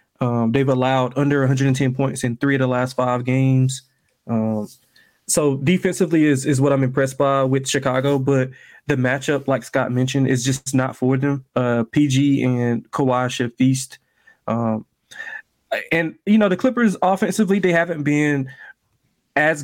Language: English